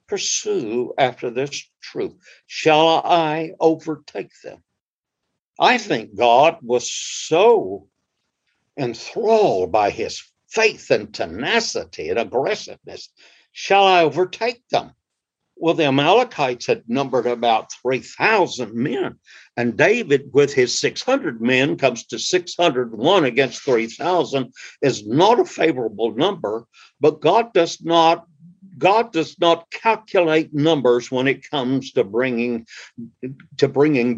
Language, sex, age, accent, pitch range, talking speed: English, male, 60-79, American, 135-195 Hz, 110 wpm